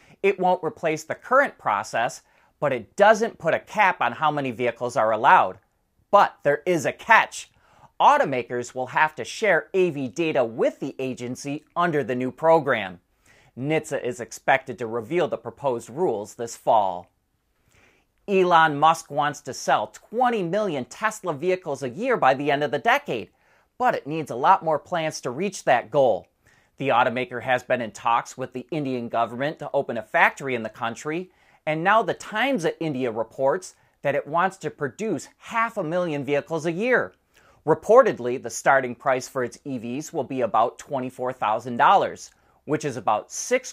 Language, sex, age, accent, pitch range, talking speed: English, male, 30-49, American, 125-170 Hz, 170 wpm